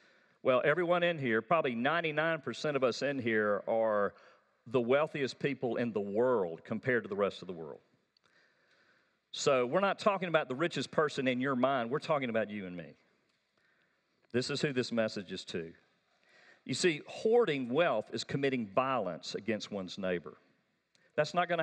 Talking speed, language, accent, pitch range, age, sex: 170 wpm, English, American, 125-190 Hz, 50-69, male